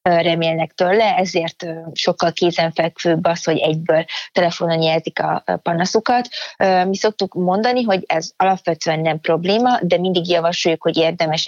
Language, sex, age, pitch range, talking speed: Hungarian, female, 30-49, 165-185 Hz, 130 wpm